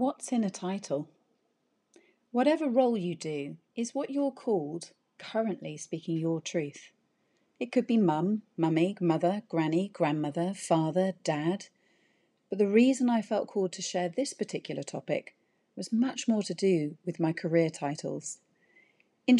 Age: 40-59